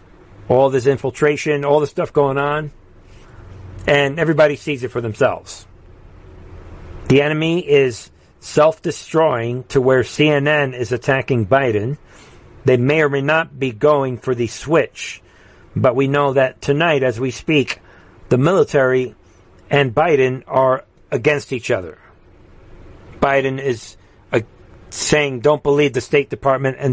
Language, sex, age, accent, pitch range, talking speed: English, male, 50-69, American, 100-140 Hz, 130 wpm